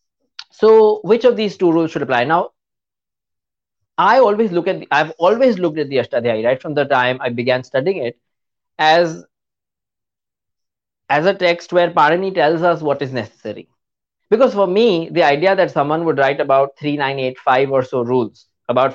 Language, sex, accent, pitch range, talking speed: English, male, Indian, 130-180 Hz, 170 wpm